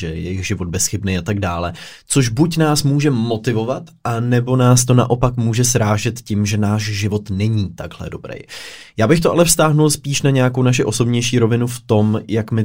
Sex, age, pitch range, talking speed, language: male, 20-39, 105-125 Hz, 200 wpm, Czech